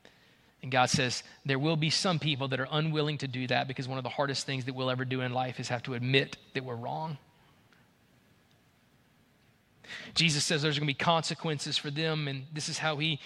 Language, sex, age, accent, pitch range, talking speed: English, male, 30-49, American, 150-200 Hz, 210 wpm